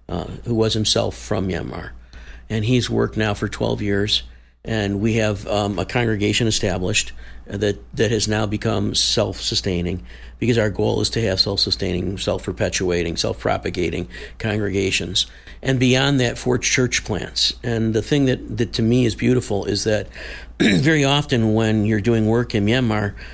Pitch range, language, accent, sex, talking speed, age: 95-120 Hz, English, American, male, 155 wpm, 50-69